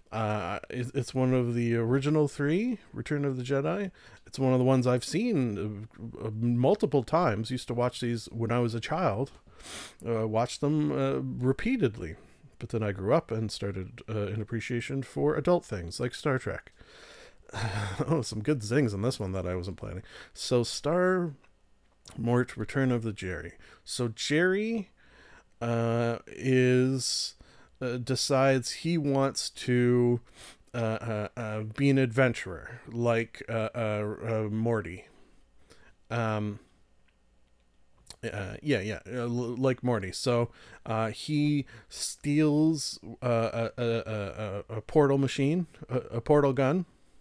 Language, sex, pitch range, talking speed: English, male, 110-140 Hz, 140 wpm